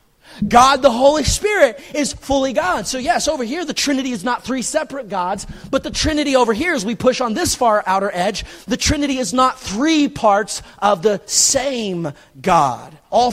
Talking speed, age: 190 wpm, 30-49